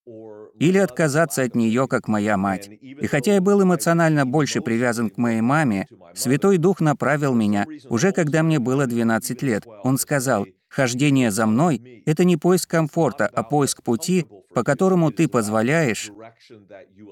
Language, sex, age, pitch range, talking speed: Russian, male, 30-49, 115-160 Hz, 150 wpm